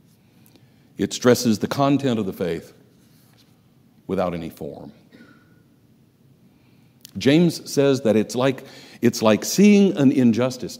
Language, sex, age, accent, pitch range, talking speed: English, male, 60-79, American, 110-140 Hz, 105 wpm